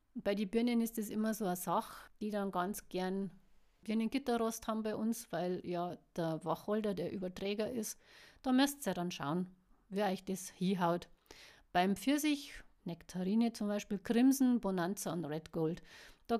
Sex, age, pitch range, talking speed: female, 50-69, 190-240 Hz, 165 wpm